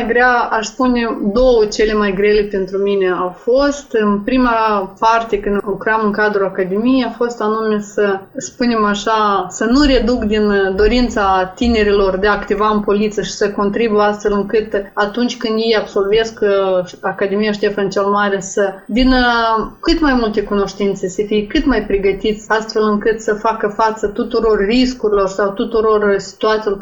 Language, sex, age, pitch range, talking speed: Romanian, female, 20-39, 205-235 Hz, 155 wpm